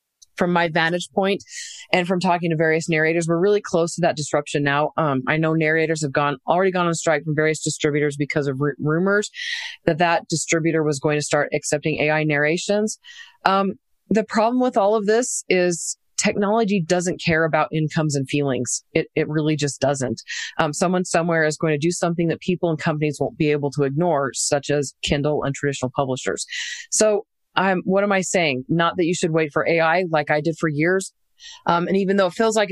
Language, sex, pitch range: English, female, 150-185 Hz